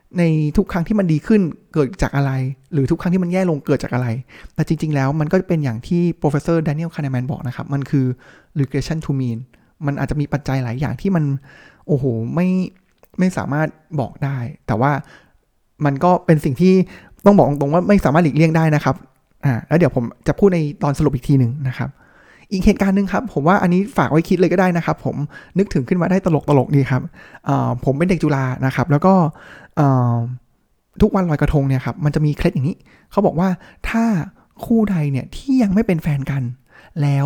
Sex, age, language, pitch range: male, 20-39, Thai, 135-180 Hz